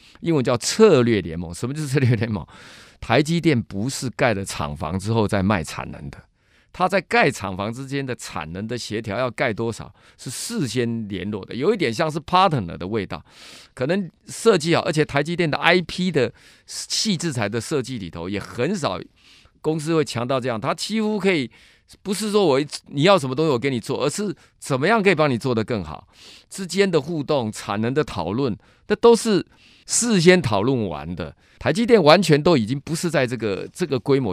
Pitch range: 110-165 Hz